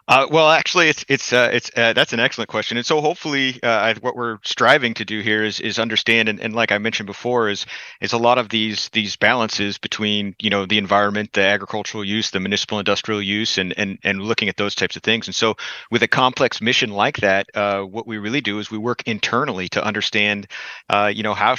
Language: English